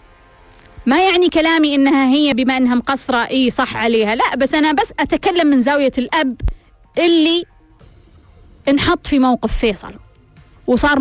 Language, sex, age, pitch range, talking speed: Arabic, female, 20-39, 220-300 Hz, 135 wpm